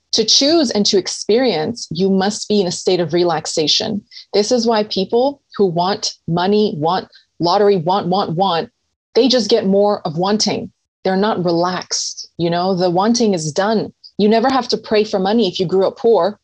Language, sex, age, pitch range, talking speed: English, female, 20-39, 180-225 Hz, 190 wpm